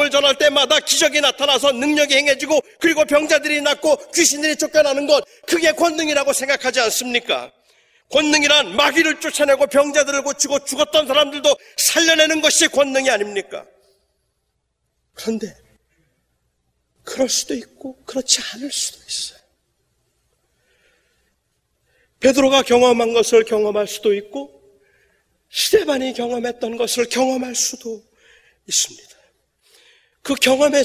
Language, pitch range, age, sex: Korean, 235-300 Hz, 40-59, male